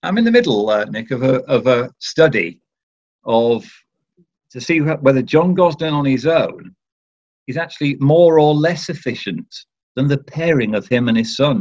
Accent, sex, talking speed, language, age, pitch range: British, male, 175 wpm, English, 50-69, 110-150 Hz